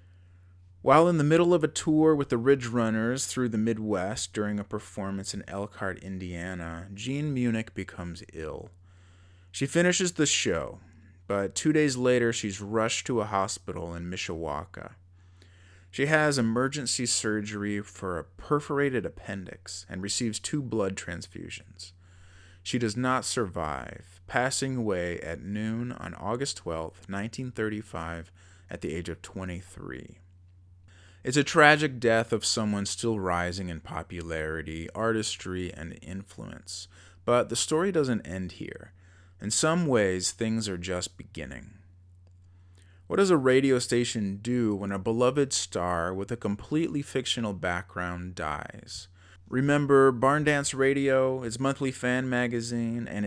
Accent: American